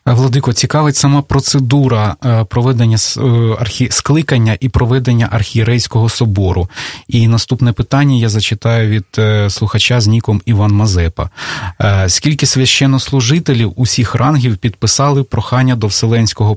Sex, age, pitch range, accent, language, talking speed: male, 20-39, 105-130 Hz, native, Russian, 100 wpm